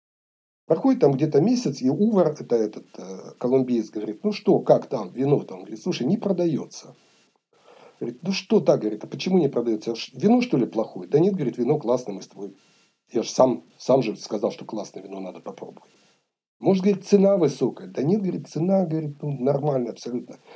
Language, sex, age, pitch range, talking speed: Russian, male, 60-79, 120-180 Hz, 195 wpm